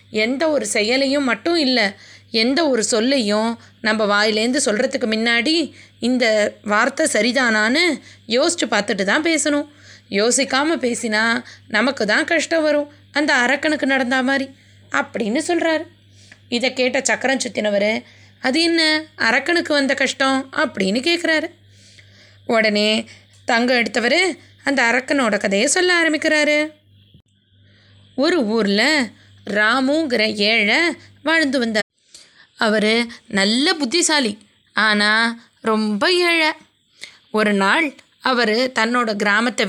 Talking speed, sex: 100 wpm, female